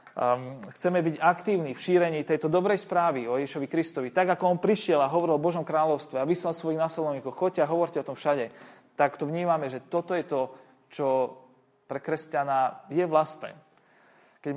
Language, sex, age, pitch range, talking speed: Slovak, male, 30-49, 130-170 Hz, 180 wpm